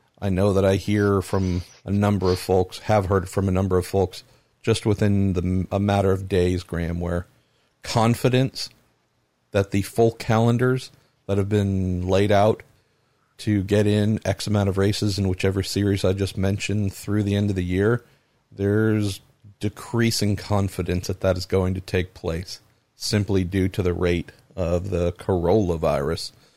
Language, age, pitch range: English, 50-69, 90-105 Hz